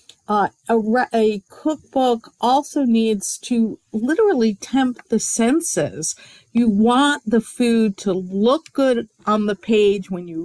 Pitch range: 200-235 Hz